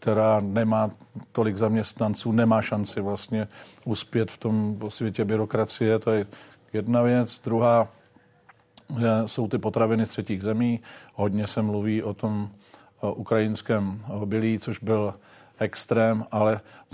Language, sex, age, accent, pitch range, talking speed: Czech, male, 50-69, native, 105-110 Hz, 125 wpm